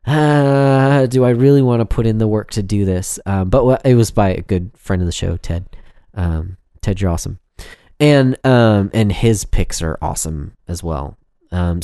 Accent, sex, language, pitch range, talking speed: American, male, English, 95-140 Hz, 205 wpm